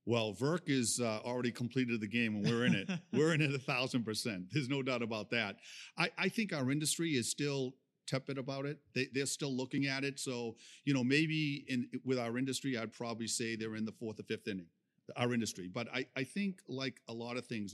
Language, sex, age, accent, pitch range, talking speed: English, male, 50-69, American, 110-135 Hz, 230 wpm